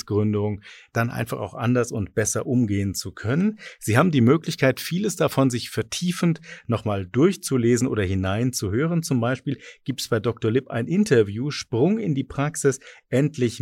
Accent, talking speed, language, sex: German, 155 wpm, German, male